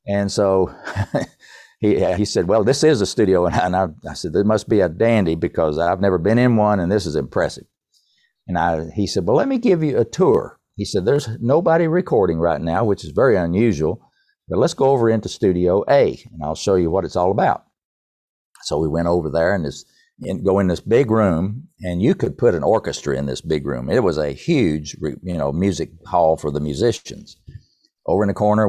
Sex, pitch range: male, 85-110 Hz